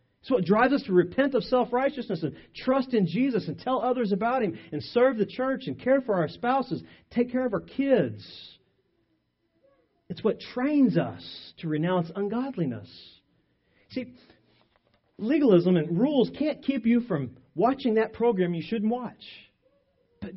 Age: 40-59